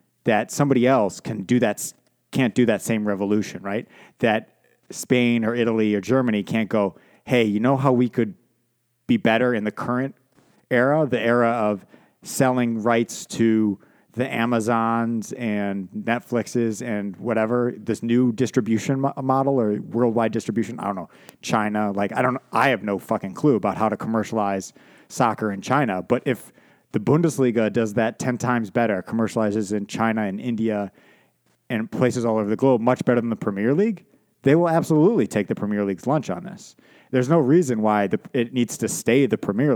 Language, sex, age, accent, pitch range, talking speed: English, male, 30-49, American, 105-125 Hz, 170 wpm